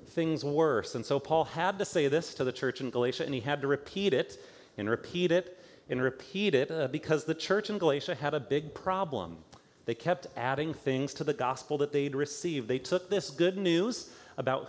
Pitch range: 130-165 Hz